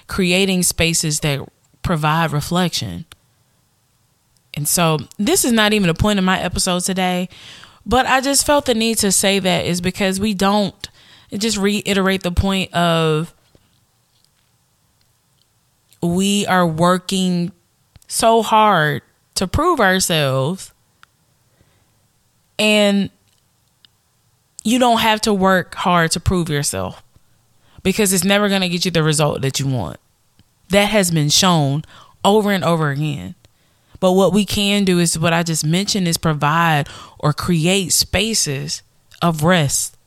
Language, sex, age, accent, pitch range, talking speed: English, female, 20-39, American, 145-195 Hz, 135 wpm